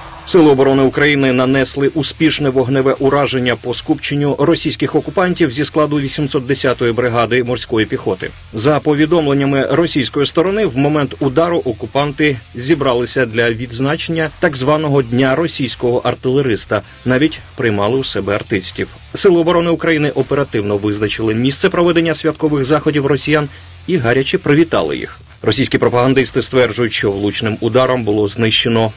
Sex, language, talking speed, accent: male, Ukrainian, 125 wpm, native